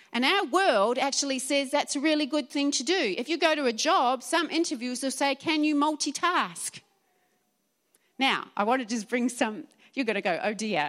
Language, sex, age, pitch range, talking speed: English, female, 40-59, 205-280 Hz, 210 wpm